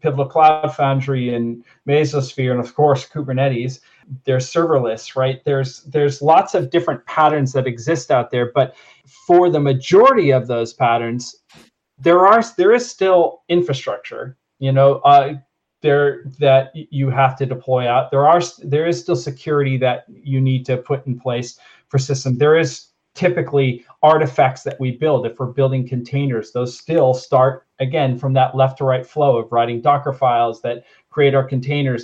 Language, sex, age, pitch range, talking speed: English, male, 40-59, 130-150 Hz, 165 wpm